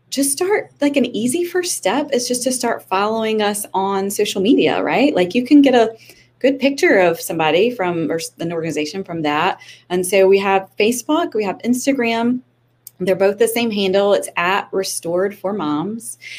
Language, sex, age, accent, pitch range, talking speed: English, female, 30-49, American, 170-225 Hz, 180 wpm